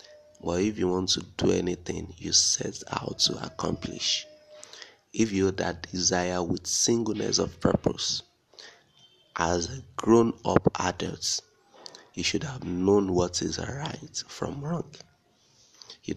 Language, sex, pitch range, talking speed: English, male, 90-110 Hz, 135 wpm